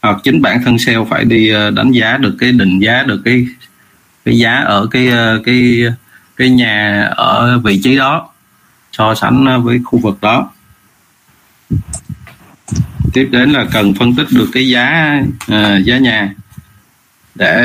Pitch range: 105-125 Hz